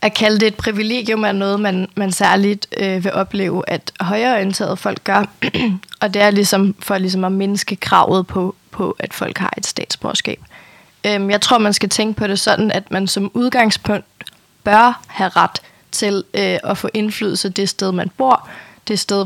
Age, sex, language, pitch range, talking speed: 20-39, female, Danish, 190-210 Hz, 185 wpm